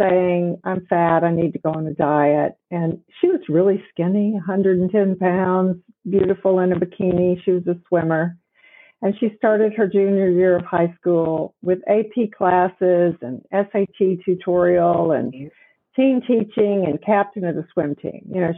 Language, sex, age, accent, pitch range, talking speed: English, female, 50-69, American, 170-210 Hz, 165 wpm